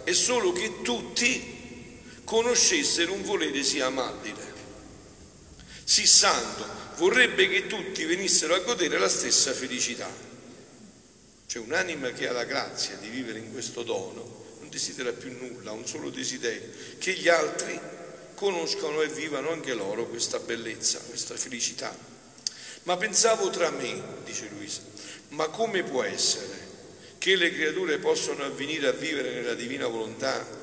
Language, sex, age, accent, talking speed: Italian, male, 50-69, native, 140 wpm